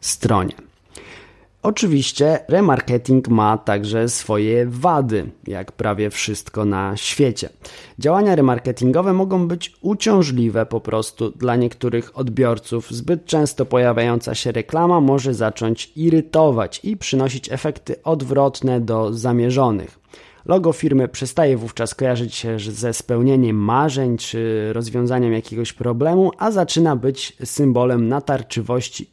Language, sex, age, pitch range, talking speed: Polish, male, 20-39, 115-150 Hz, 110 wpm